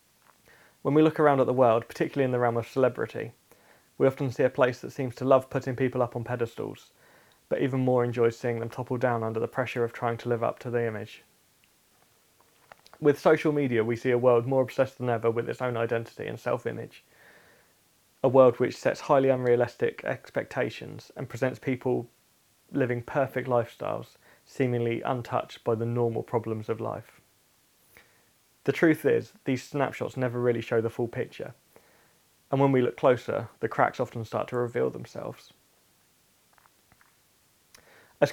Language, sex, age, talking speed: English, male, 20-39, 170 wpm